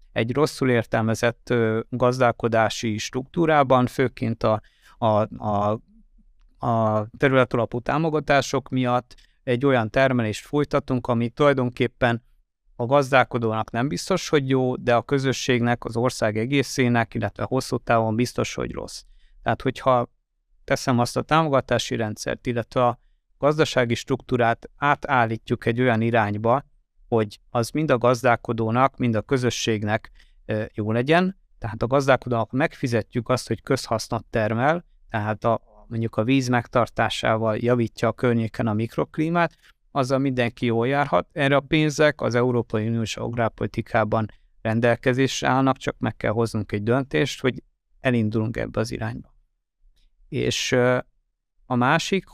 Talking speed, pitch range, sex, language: 120 wpm, 115-135 Hz, male, Hungarian